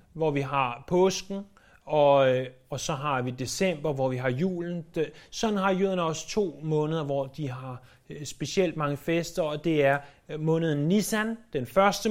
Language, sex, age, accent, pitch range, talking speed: Danish, male, 30-49, native, 130-195 Hz, 165 wpm